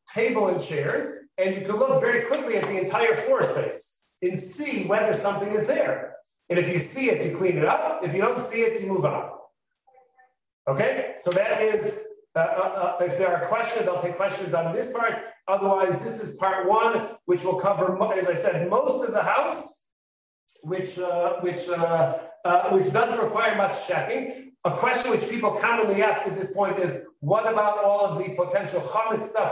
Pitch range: 180-235 Hz